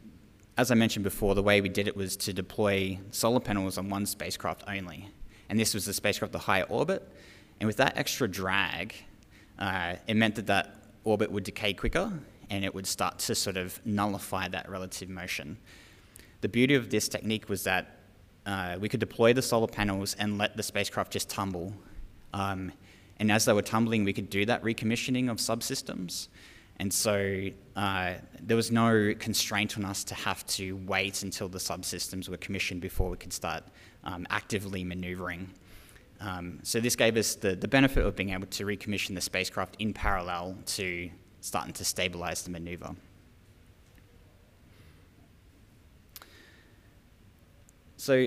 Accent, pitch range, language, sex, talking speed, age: Australian, 95-110 Hz, English, male, 165 wpm, 20-39